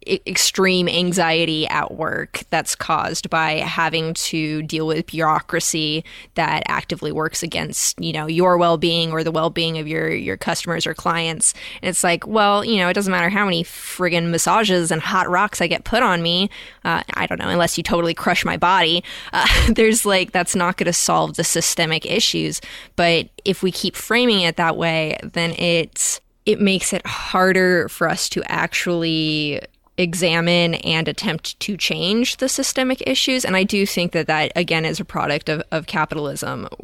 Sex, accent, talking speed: female, American, 180 wpm